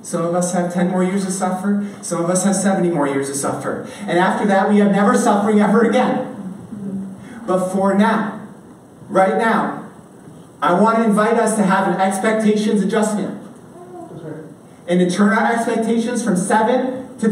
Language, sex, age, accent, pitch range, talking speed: English, male, 30-49, American, 185-220 Hz, 175 wpm